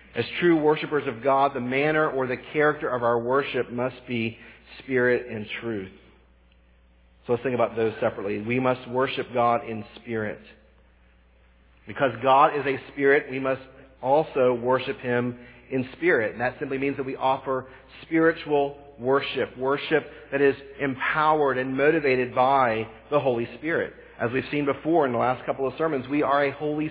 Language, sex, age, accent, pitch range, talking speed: English, male, 40-59, American, 120-155 Hz, 165 wpm